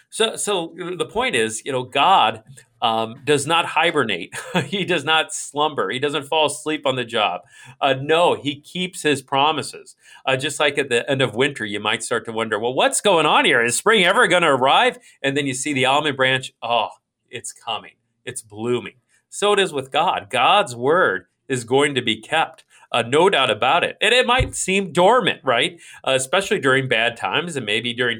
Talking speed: 205 wpm